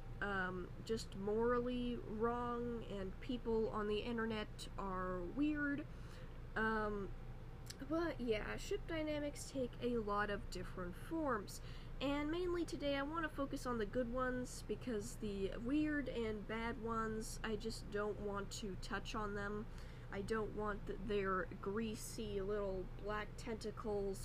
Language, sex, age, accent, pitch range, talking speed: English, female, 10-29, American, 205-275 Hz, 135 wpm